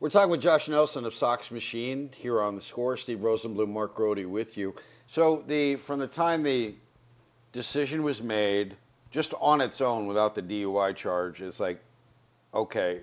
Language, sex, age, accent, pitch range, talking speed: English, male, 50-69, American, 100-125 Hz, 175 wpm